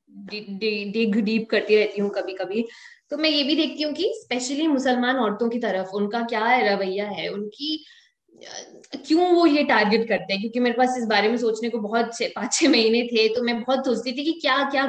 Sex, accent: female, native